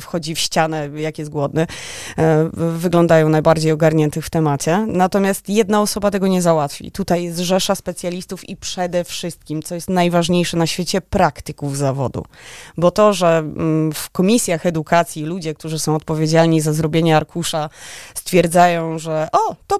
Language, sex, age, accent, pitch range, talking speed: Polish, female, 20-39, native, 155-180 Hz, 145 wpm